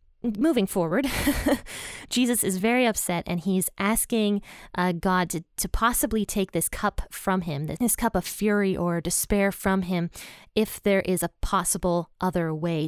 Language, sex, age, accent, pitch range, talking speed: English, female, 20-39, American, 175-210 Hz, 165 wpm